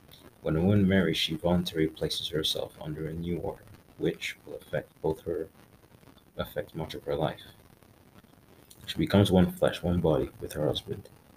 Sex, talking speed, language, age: male, 165 wpm, English, 30-49